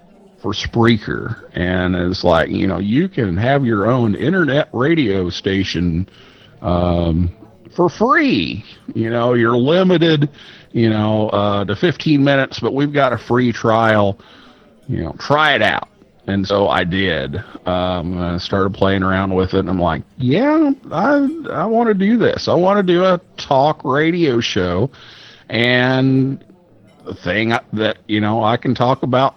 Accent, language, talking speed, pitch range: American, English, 155 wpm, 100-135 Hz